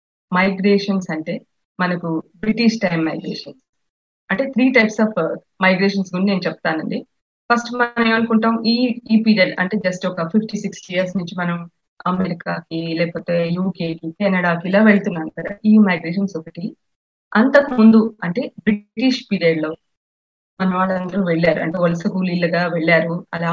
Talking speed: 130 wpm